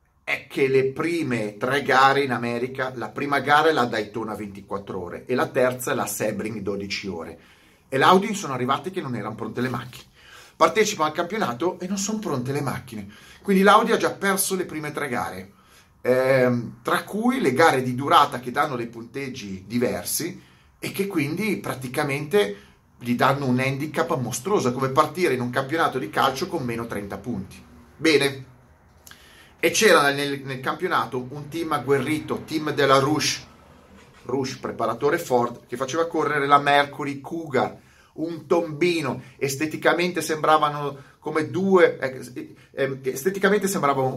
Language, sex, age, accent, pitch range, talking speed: Italian, male, 30-49, native, 120-160 Hz, 160 wpm